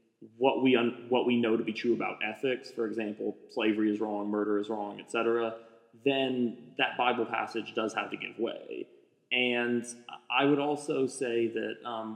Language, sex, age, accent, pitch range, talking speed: English, male, 30-49, American, 110-130 Hz, 180 wpm